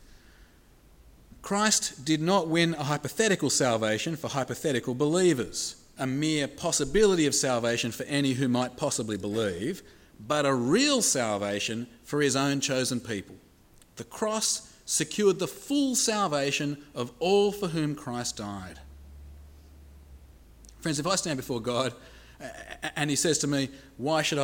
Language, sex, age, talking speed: English, male, 40-59, 135 wpm